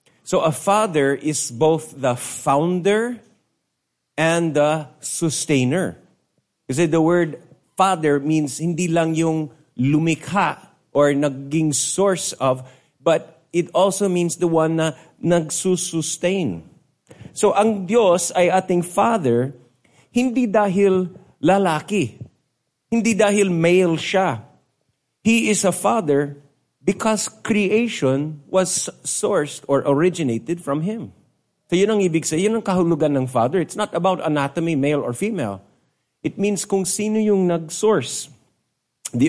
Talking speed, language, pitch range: 120 wpm, English, 145-185 Hz